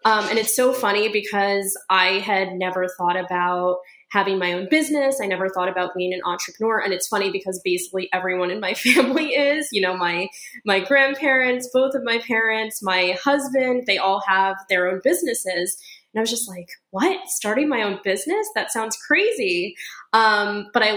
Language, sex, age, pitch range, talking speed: English, female, 20-39, 185-240 Hz, 185 wpm